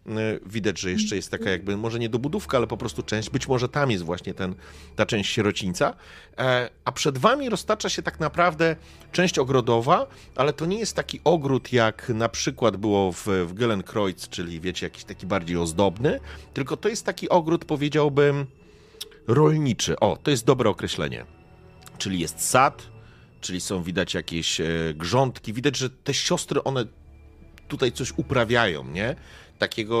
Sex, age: male, 40-59